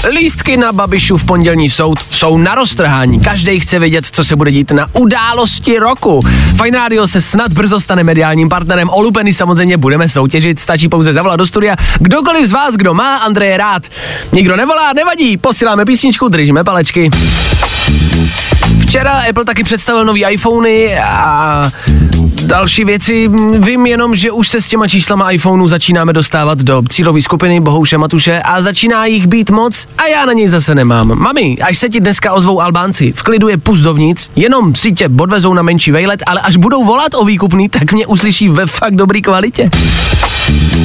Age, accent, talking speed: 20-39, native, 170 wpm